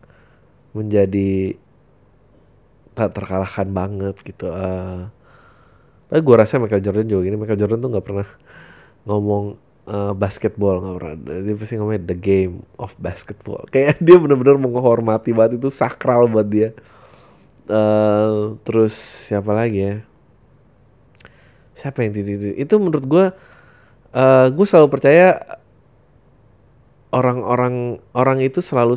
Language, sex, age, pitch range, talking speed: Indonesian, male, 20-39, 105-130 Hz, 120 wpm